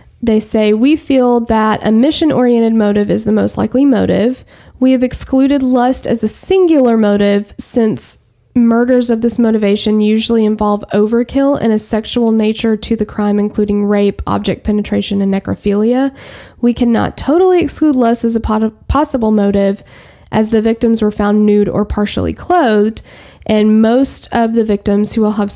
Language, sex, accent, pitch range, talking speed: English, female, American, 205-240 Hz, 160 wpm